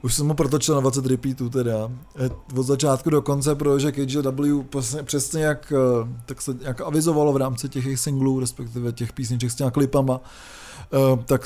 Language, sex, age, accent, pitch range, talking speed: Czech, male, 20-39, native, 130-150 Hz, 155 wpm